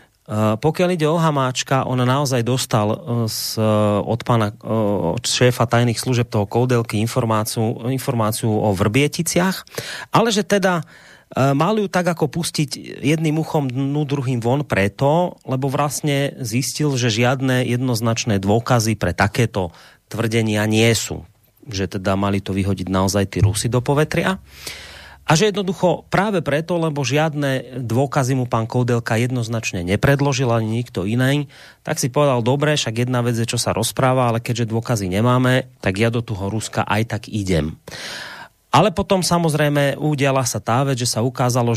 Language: Slovak